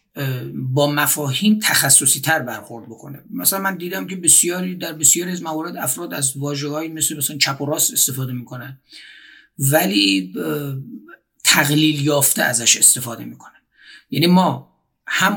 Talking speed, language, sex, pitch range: 135 wpm, Persian, male, 130-170 Hz